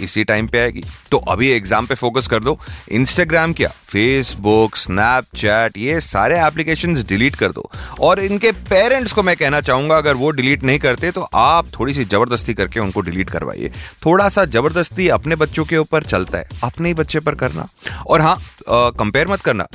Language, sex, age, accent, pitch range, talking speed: Hindi, male, 30-49, native, 105-160 Hz, 190 wpm